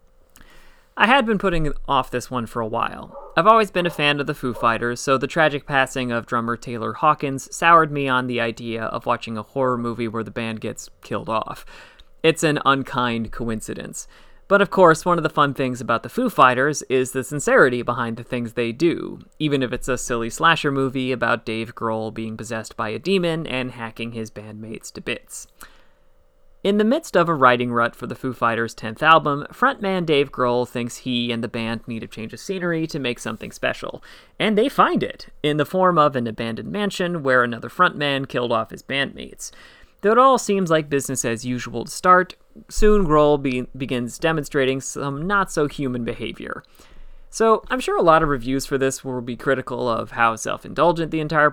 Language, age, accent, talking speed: English, 30-49, American, 200 wpm